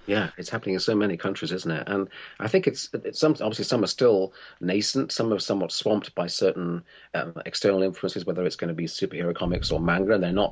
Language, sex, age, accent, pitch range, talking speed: English, male, 40-59, British, 85-115 Hz, 235 wpm